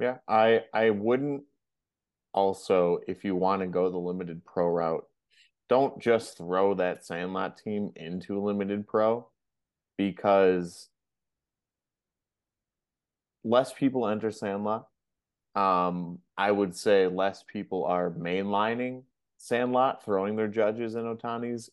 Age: 30-49